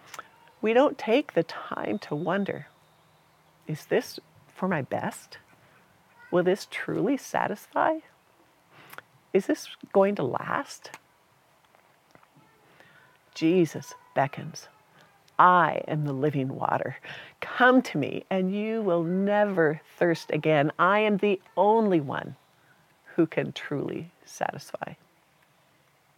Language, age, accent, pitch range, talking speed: English, 50-69, American, 150-195 Hz, 105 wpm